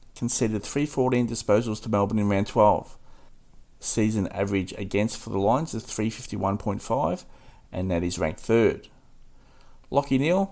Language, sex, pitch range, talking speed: English, male, 95-120 Hz, 130 wpm